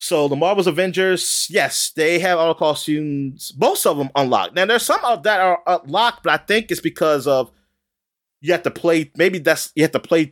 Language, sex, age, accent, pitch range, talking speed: English, male, 30-49, American, 115-180 Hz, 210 wpm